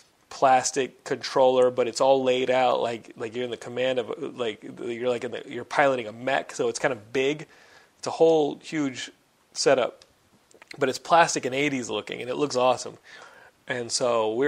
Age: 30-49